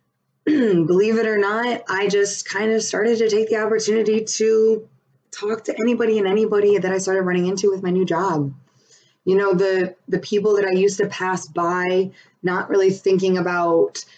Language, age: English, 20-39